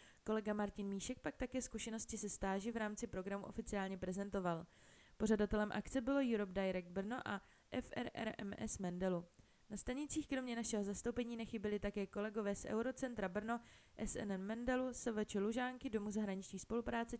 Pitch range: 195-235 Hz